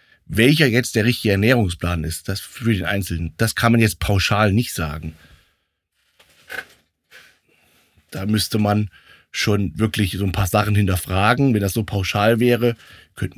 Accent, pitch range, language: German, 95-120 Hz, German